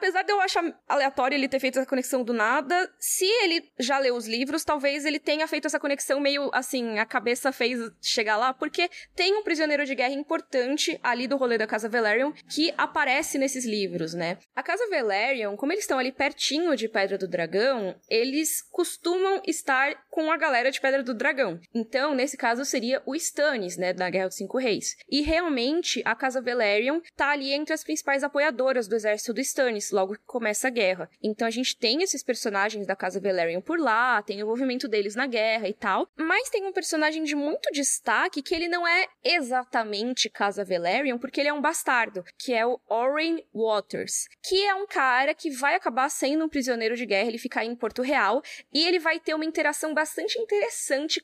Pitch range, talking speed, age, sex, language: 225-310 Hz, 200 wpm, 10-29, female, Portuguese